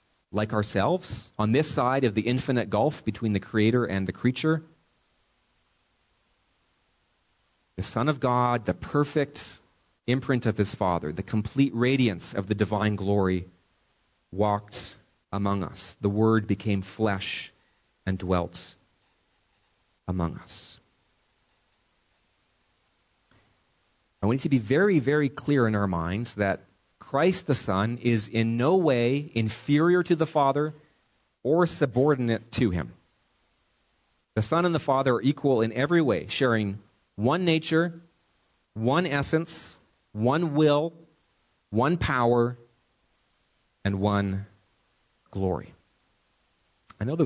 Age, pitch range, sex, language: 30-49, 100-135 Hz, male, English